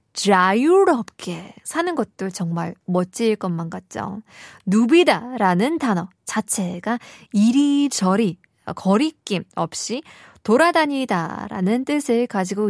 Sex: female